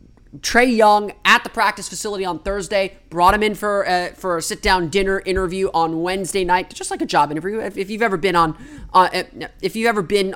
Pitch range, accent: 155-195 Hz, American